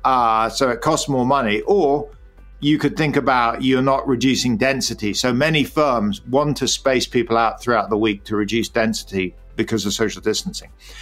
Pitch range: 115-145 Hz